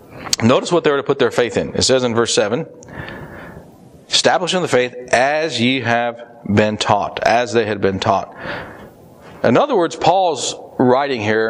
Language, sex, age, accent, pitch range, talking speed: English, male, 40-59, American, 120-170 Hz, 175 wpm